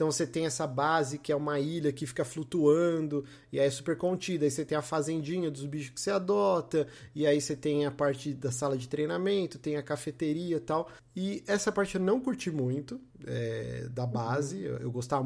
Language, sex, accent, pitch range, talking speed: Portuguese, male, Brazilian, 130-165 Hz, 210 wpm